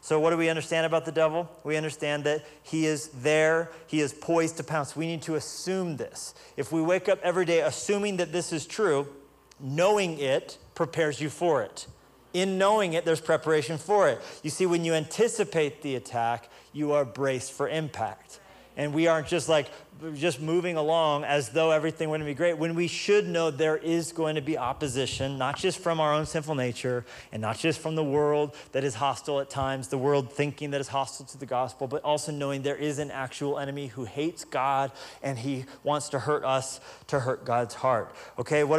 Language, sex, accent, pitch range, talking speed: English, male, American, 140-165 Hz, 205 wpm